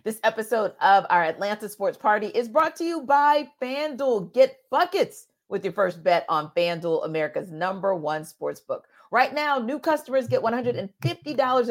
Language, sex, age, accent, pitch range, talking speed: English, female, 40-59, American, 185-260 Hz, 165 wpm